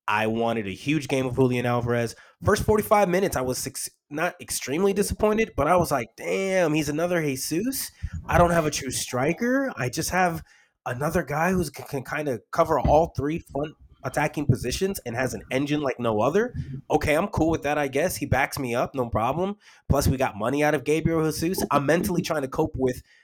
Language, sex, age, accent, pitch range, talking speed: English, male, 20-39, American, 120-155 Hz, 205 wpm